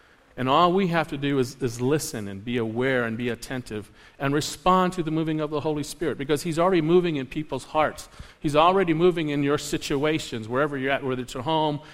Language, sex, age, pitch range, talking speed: English, male, 50-69, 135-180 Hz, 220 wpm